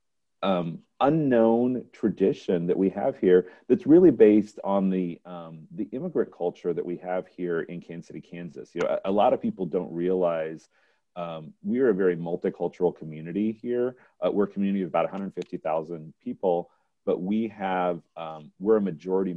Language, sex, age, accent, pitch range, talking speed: English, male, 40-59, American, 85-105 Hz, 175 wpm